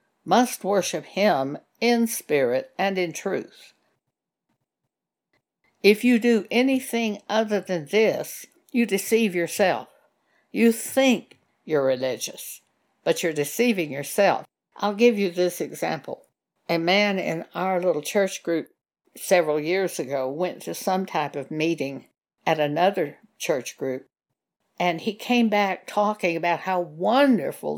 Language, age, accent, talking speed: English, 60-79, American, 125 wpm